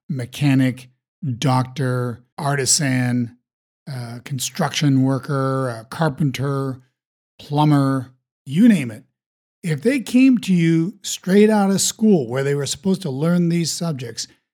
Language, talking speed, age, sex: English, 115 wpm, 50-69, male